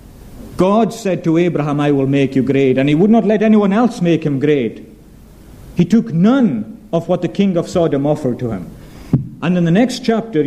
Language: English